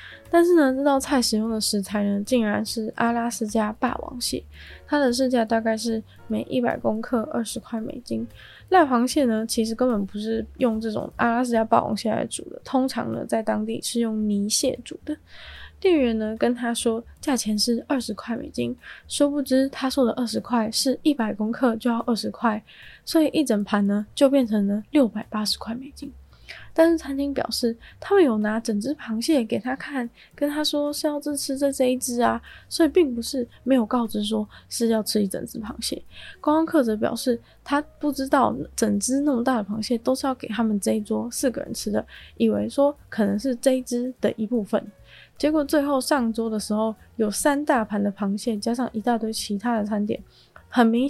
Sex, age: female, 10-29